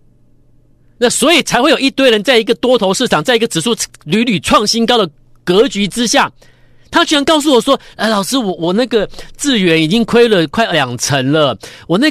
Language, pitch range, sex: Chinese, 160-245 Hz, male